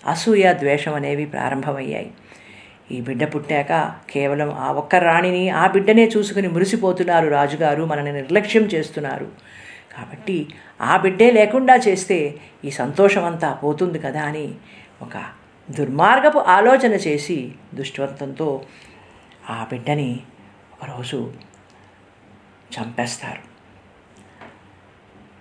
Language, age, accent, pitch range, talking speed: Telugu, 50-69, native, 135-175 Hz, 90 wpm